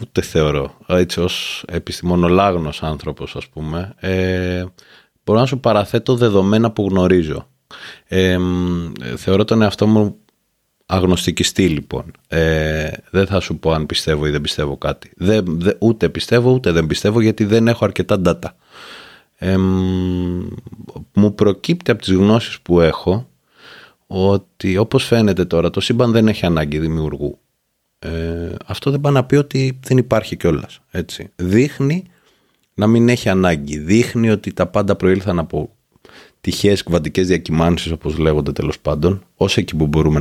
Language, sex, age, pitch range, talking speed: Greek, male, 30-49, 80-110 Hz, 135 wpm